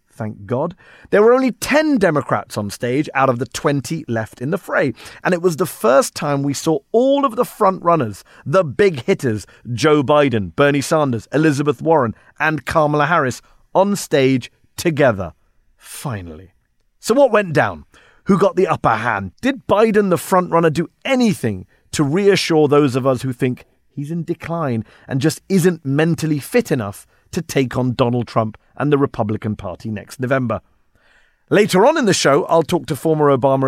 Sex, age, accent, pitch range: male, 30-49, British, 125-185 Hz